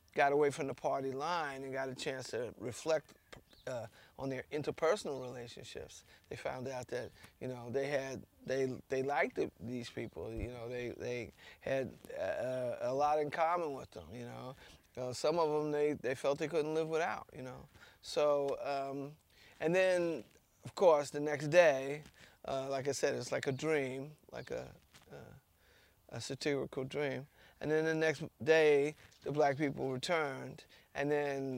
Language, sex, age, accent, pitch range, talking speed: English, male, 30-49, American, 125-150 Hz, 175 wpm